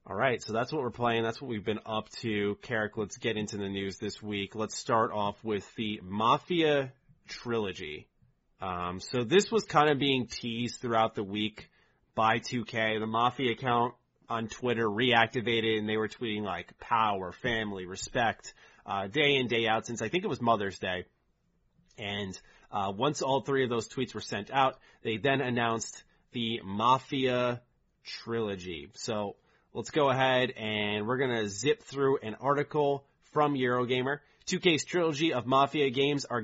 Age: 30-49